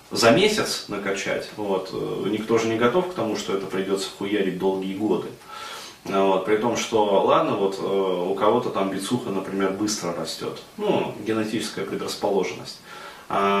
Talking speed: 145 wpm